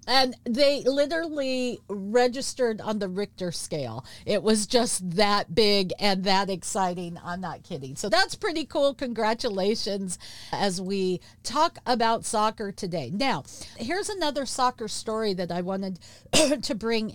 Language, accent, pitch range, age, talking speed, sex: English, American, 185-250 Hz, 50-69, 140 wpm, female